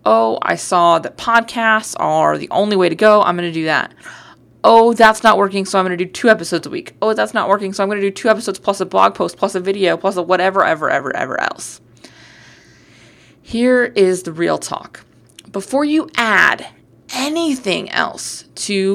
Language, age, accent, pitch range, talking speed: English, 20-39, American, 170-220 Hz, 205 wpm